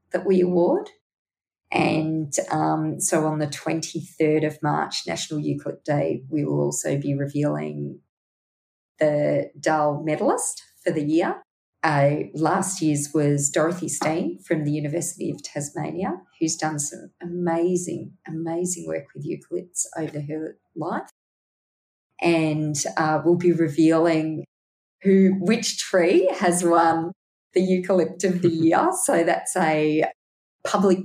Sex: female